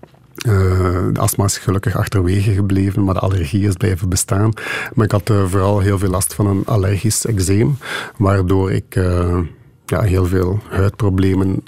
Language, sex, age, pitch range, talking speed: Dutch, male, 50-69, 95-105 Hz, 165 wpm